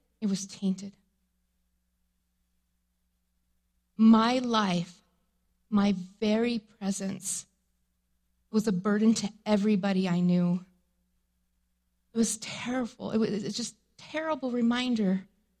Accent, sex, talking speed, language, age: American, female, 90 wpm, English, 30-49